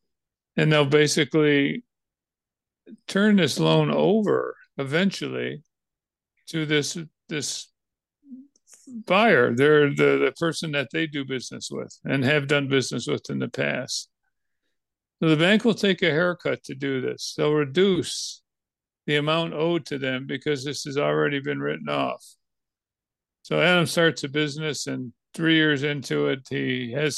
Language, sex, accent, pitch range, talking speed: English, male, American, 130-160 Hz, 145 wpm